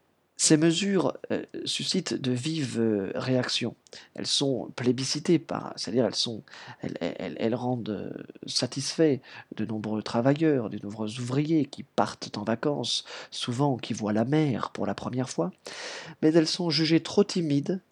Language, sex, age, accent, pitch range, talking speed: French, male, 40-59, French, 120-150 Hz, 145 wpm